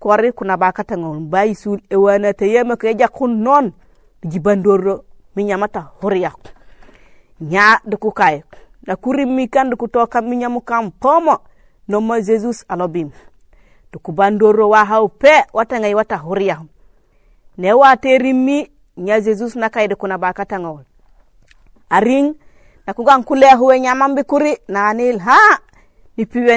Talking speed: 115 wpm